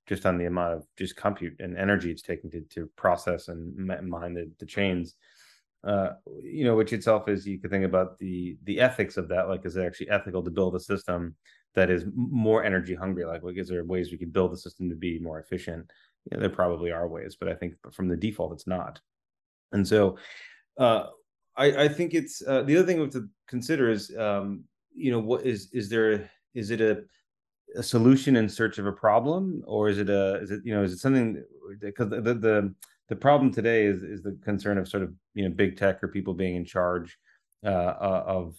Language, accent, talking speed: English, American, 220 wpm